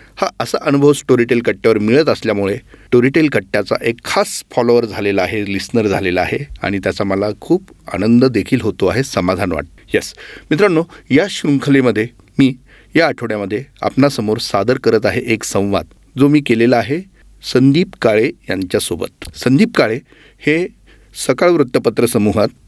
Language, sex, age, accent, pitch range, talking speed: Marathi, male, 40-59, native, 105-140 Hz, 140 wpm